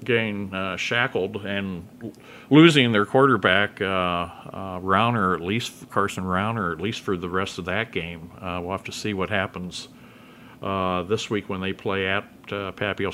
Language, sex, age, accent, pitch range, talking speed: English, male, 50-69, American, 95-115 Hz, 175 wpm